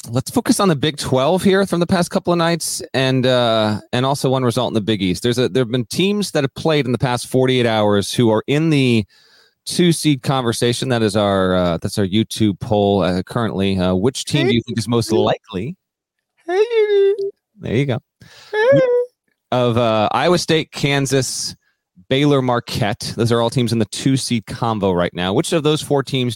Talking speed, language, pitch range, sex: 205 wpm, English, 110-155 Hz, male